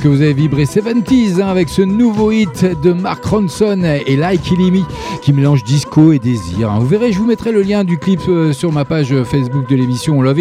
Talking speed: 225 wpm